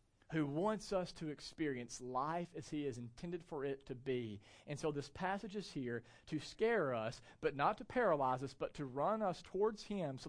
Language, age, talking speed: English, 40-59, 205 wpm